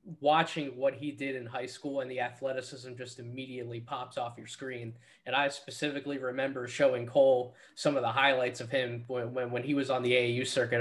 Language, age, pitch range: English, 20-39, 125-145 Hz